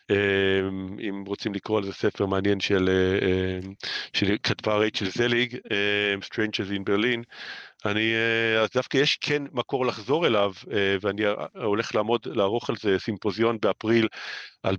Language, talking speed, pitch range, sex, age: Hebrew, 130 wpm, 100-115 Hz, male, 40-59